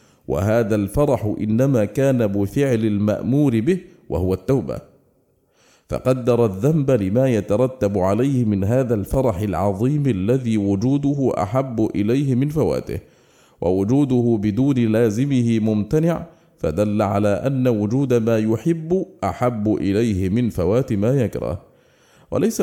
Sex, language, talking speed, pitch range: male, English, 110 wpm, 105-135 Hz